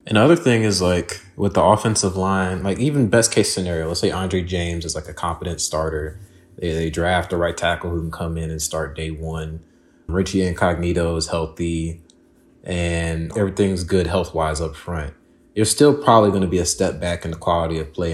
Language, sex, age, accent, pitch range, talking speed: English, male, 30-49, American, 80-95 Hz, 210 wpm